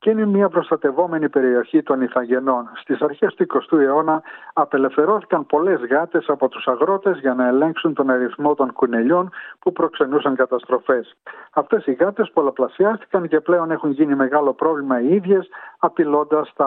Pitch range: 135-175 Hz